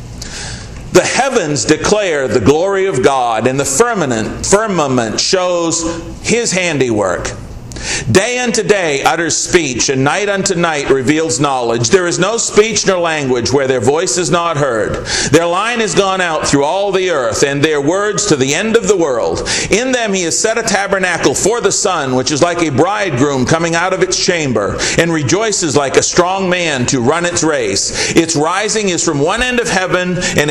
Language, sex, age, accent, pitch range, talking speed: English, male, 50-69, American, 130-195 Hz, 185 wpm